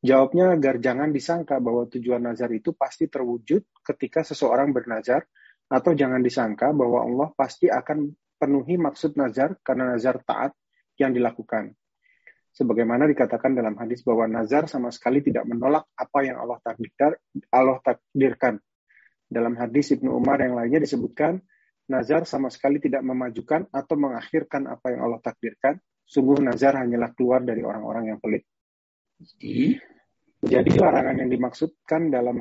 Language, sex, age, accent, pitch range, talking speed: Indonesian, male, 30-49, native, 120-140 Hz, 135 wpm